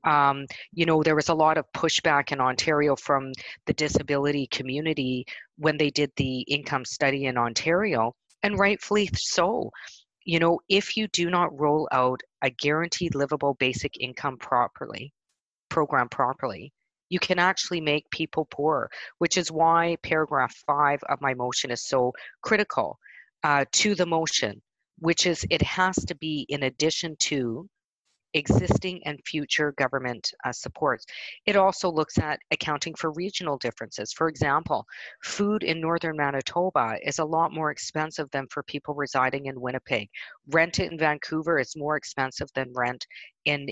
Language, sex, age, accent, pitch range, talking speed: English, female, 40-59, American, 140-165 Hz, 155 wpm